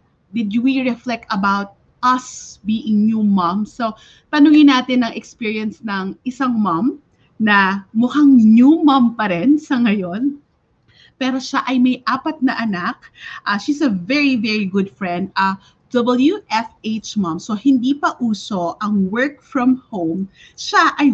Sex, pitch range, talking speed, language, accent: female, 205-275 Hz, 150 wpm, English, Filipino